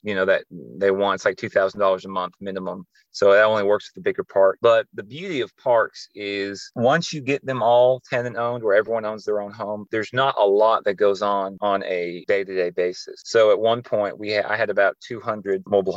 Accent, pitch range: American, 100-115 Hz